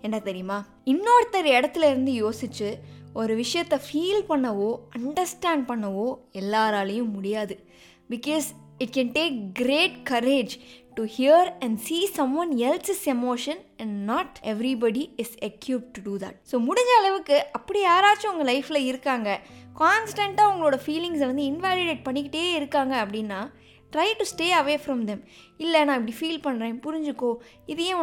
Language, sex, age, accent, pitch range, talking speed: Tamil, female, 20-39, native, 230-320 Hz, 145 wpm